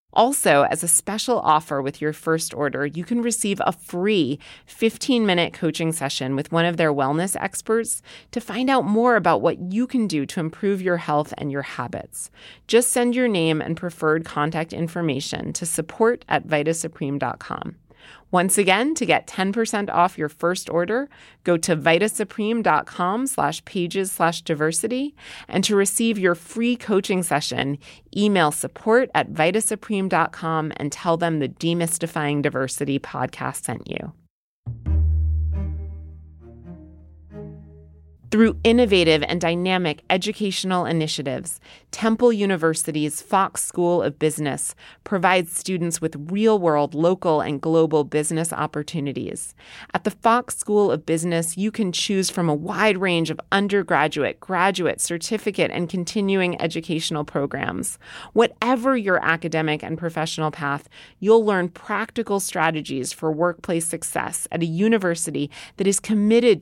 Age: 30-49